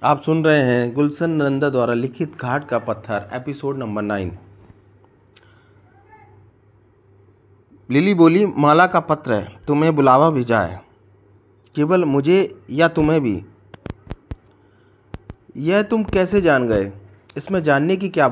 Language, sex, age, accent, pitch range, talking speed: Hindi, male, 30-49, native, 105-155 Hz, 125 wpm